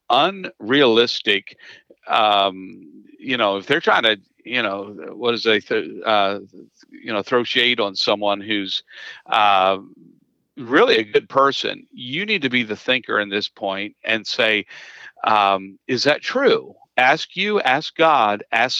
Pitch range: 105-145 Hz